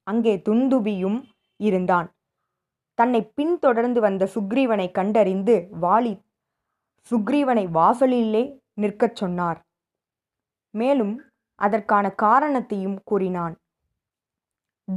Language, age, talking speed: Tamil, 20-39, 70 wpm